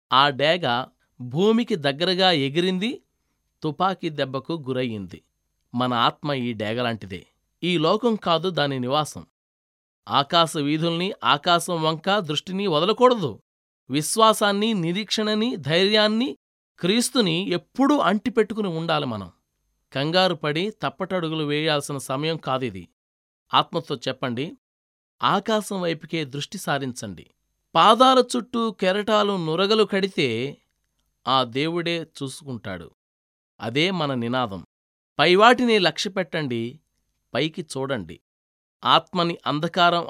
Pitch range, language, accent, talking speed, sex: 125-190 Hz, Telugu, native, 85 wpm, male